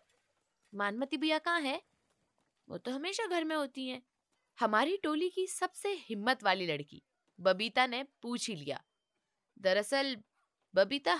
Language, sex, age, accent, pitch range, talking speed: Hindi, female, 20-39, native, 165-265 Hz, 140 wpm